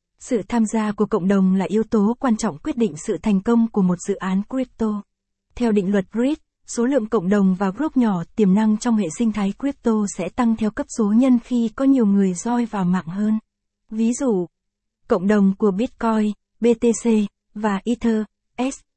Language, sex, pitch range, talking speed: Vietnamese, female, 200-235 Hz, 200 wpm